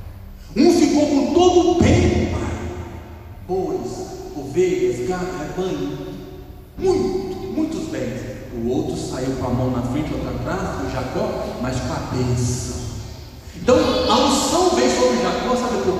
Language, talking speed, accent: Portuguese, 145 wpm, Brazilian